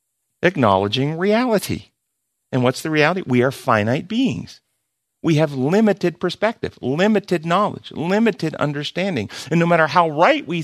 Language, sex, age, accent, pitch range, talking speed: English, male, 50-69, American, 120-180 Hz, 135 wpm